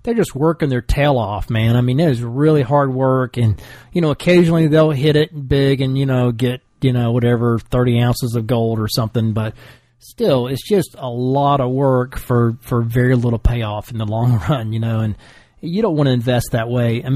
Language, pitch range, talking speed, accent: English, 120-150 Hz, 220 wpm, American